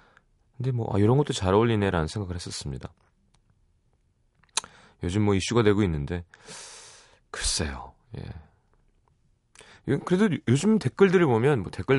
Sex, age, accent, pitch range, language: male, 30-49, native, 90-130 Hz, Korean